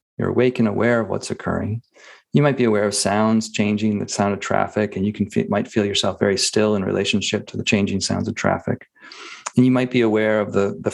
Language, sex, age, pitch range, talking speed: English, male, 40-59, 105-130 Hz, 230 wpm